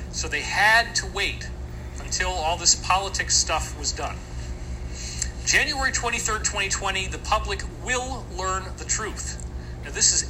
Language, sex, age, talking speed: English, male, 40-59, 140 wpm